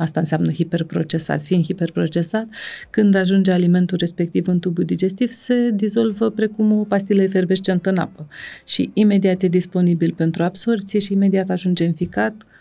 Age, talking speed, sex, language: 30-49, 150 wpm, female, Romanian